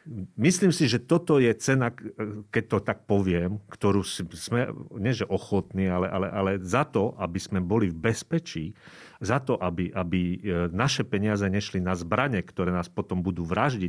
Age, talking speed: 40-59, 165 wpm